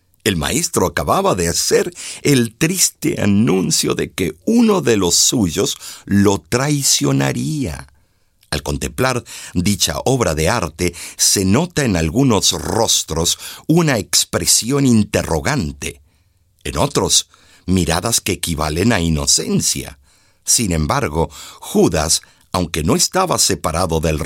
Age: 50-69